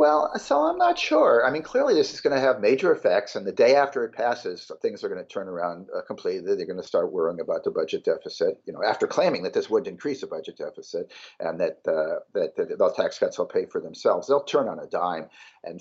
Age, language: 50-69, English